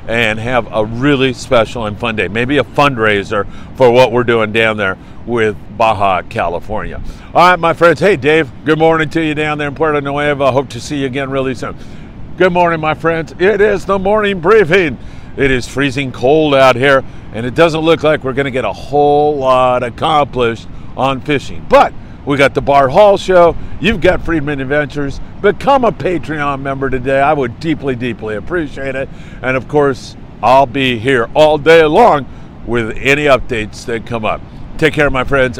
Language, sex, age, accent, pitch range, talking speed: English, male, 50-69, American, 115-155 Hz, 190 wpm